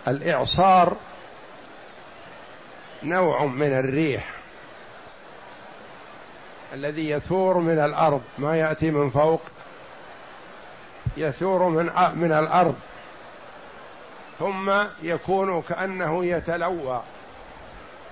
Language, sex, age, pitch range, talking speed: Arabic, male, 60-79, 165-195 Hz, 65 wpm